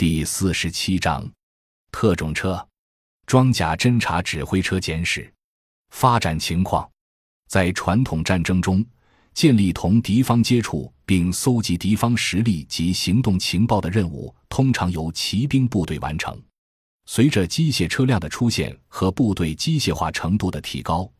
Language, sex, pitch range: Chinese, male, 80-110 Hz